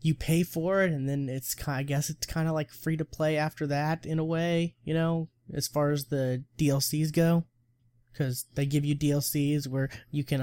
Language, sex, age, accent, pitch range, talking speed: English, male, 20-39, American, 125-150 Hz, 200 wpm